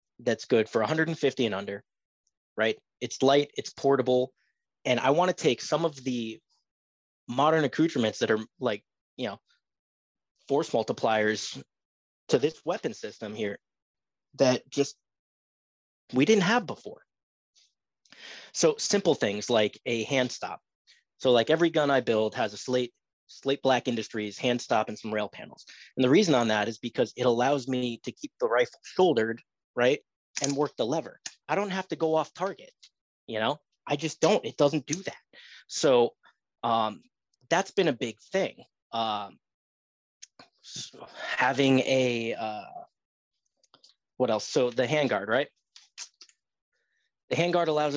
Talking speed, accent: 150 wpm, American